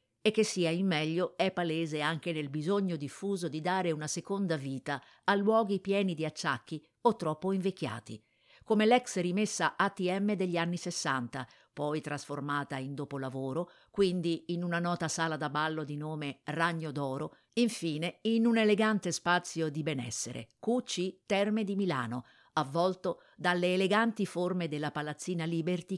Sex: female